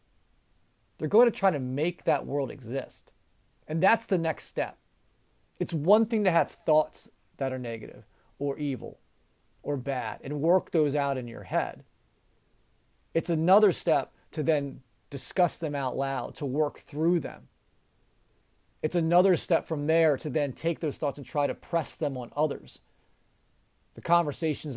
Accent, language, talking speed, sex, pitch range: American, English, 160 wpm, male, 130-165 Hz